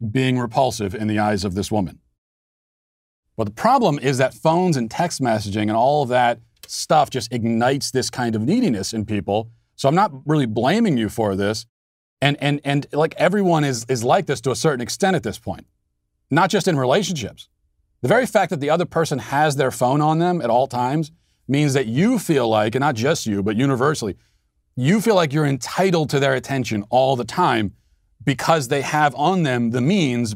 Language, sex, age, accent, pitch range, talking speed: English, male, 40-59, American, 115-160 Hz, 200 wpm